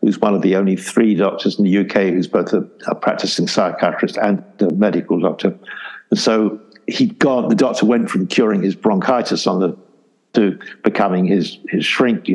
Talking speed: 190 wpm